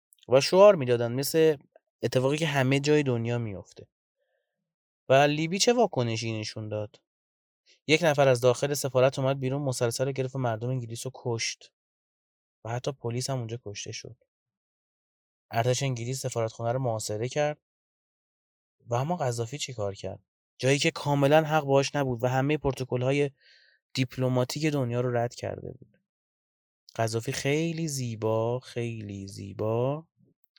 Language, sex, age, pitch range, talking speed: Persian, male, 30-49, 115-140 Hz, 135 wpm